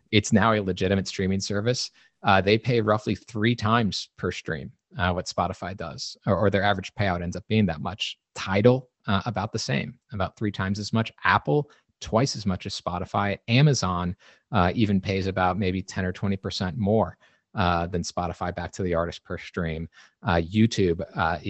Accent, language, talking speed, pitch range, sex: American, English, 185 wpm, 90-105 Hz, male